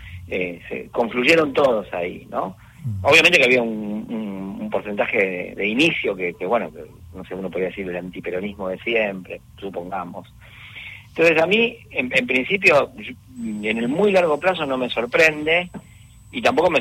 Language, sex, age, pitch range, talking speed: Spanish, male, 50-69, 110-150 Hz, 170 wpm